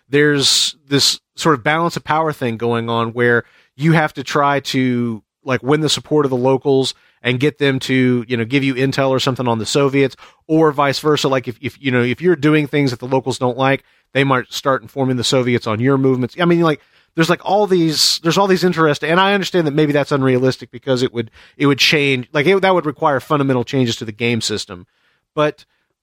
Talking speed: 230 wpm